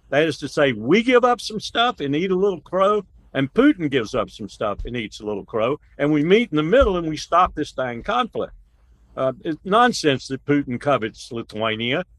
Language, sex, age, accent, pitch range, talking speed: English, male, 60-79, American, 135-190 Hz, 215 wpm